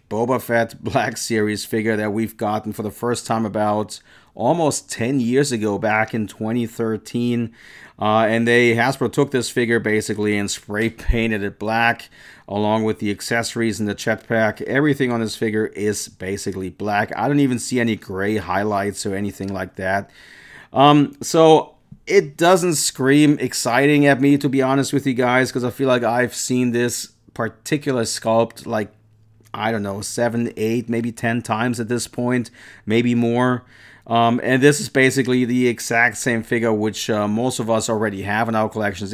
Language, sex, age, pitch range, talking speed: English, male, 40-59, 105-125 Hz, 175 wpm